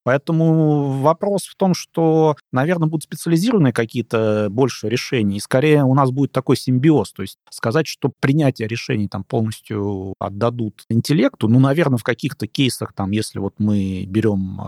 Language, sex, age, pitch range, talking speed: Russian, male, 30-49, 105-135 Hz, 155 wpm